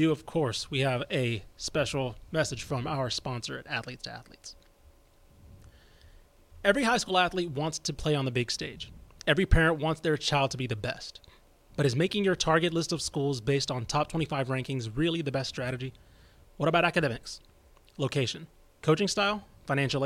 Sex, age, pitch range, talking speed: male, 30-49, 125-160 Hz, 175 wpm